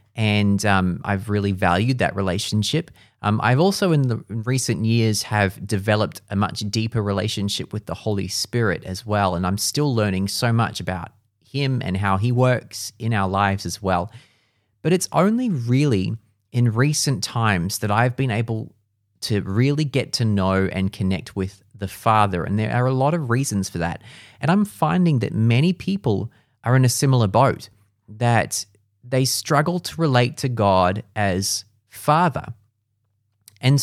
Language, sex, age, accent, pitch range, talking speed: English, male, 30-49, Australian, 105-130 Hz, 165 wpm